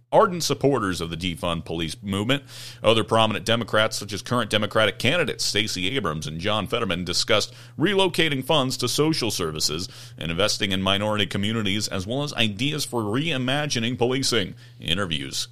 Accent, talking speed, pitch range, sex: American, 150 wpm, 100-130 Hz, male